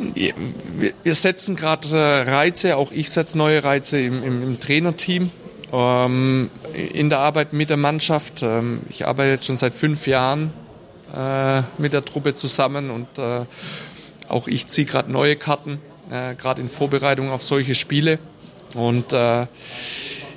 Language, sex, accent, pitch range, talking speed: German, male, German, 130-150 Hz, 140 wpm